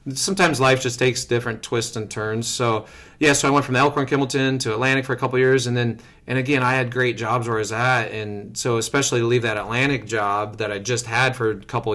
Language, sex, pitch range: English, male, 110-135 Hz